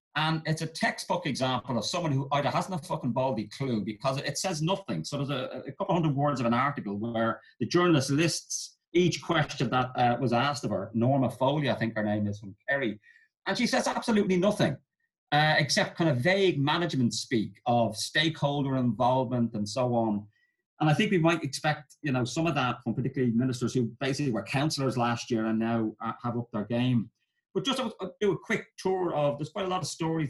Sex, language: male, English